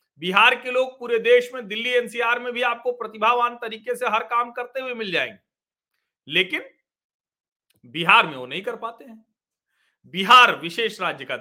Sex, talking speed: male, 170 wpm